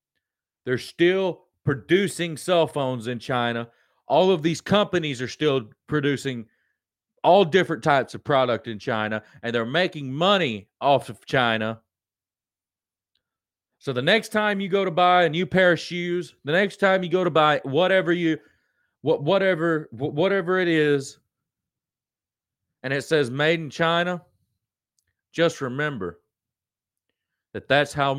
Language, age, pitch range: English, 30-49, 95-165 Hz